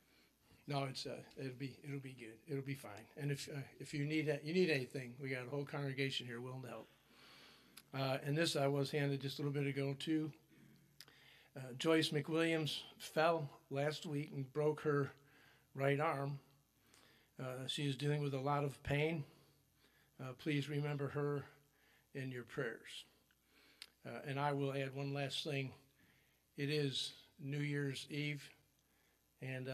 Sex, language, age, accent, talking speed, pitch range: male, English, 50-69, American, 170 wpm, 130-145 Hz